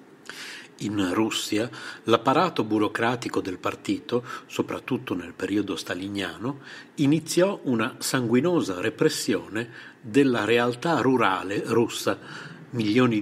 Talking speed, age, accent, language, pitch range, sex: 85 wpm, 50-69, native, Italian, 110-155 Hz, male